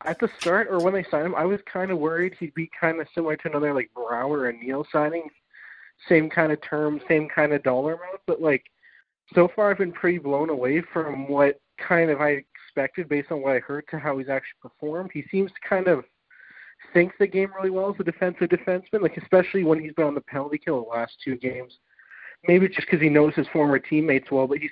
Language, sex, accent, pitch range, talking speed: English, male, American, 140-170 Hz, 235 wpm